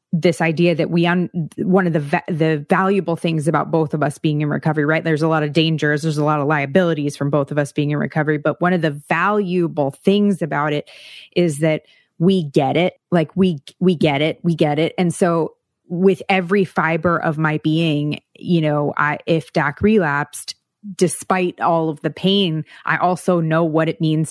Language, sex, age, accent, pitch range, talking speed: English, female, 20-39, American, 150-180 Hz, 200 wpm